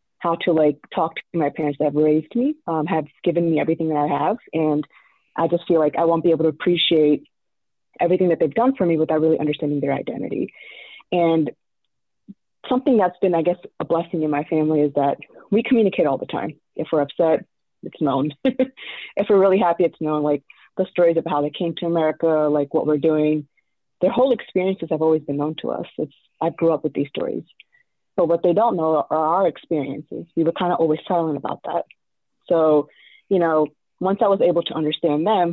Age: 30-49